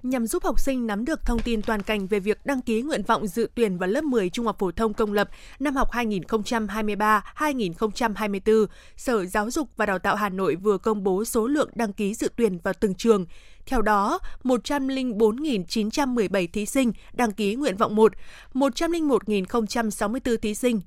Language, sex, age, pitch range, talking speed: Vietnamese, female, 20-39, 210-245 Hz, 180 wpm